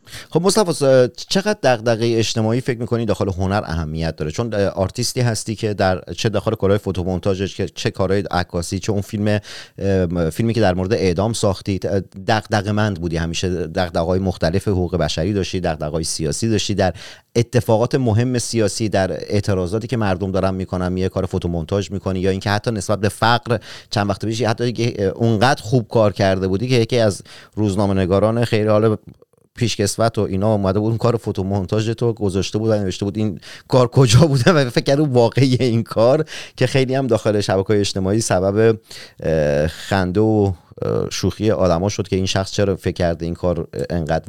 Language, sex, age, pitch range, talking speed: Persian, male, 40-59, 95-115 Hz, 165 wpm